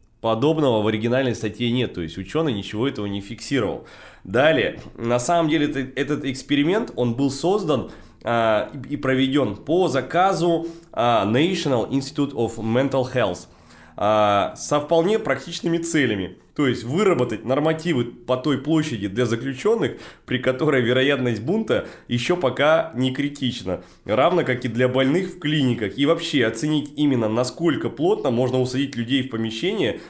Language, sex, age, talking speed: Russian, male, 20-39, 140 wpm